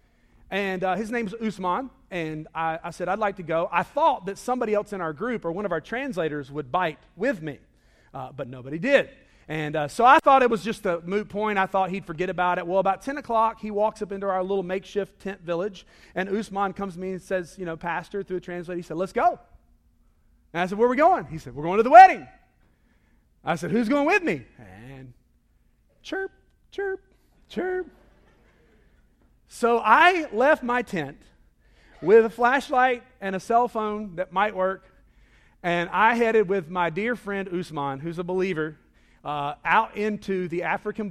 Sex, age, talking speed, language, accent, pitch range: male, 40-59, 200 wpm, English, American, 165-225 Hz